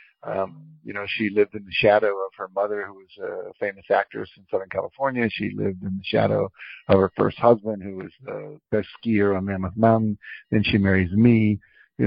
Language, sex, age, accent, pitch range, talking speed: English, male, 60-79, American, 100-120 Hz, 205 wpm